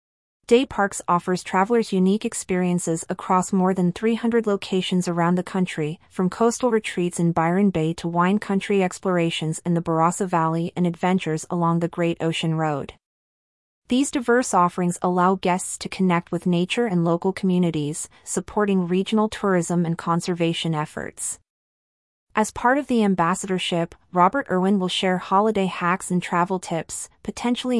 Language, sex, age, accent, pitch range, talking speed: English, female, 30-49, American, 170-200 Hz, 145 wpm